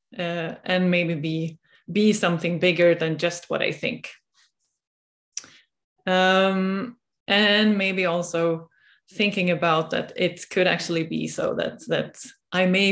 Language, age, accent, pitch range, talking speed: English, 20-39, Swedish, 170-195 Hz, 130 wpm